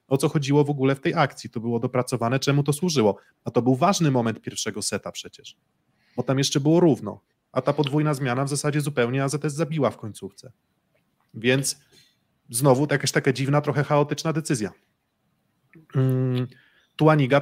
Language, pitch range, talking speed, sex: Polish, 125-150 Hz, 160 wpm, male